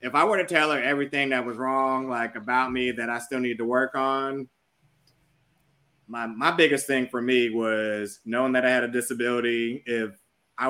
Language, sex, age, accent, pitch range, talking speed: English, male, 20-39, American, 105-130 Hz, 195 wpm